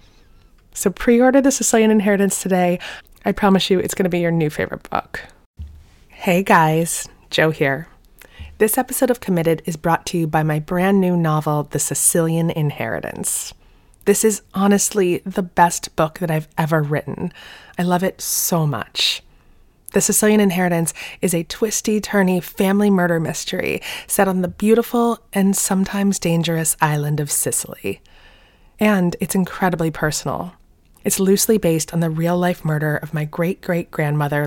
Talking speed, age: 150 wpm, 20-39